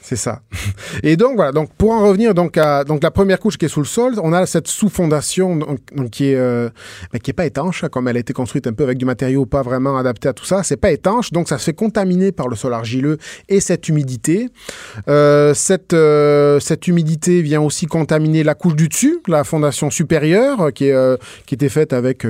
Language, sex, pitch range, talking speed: French, male, 125-160 Hz, 205 wpm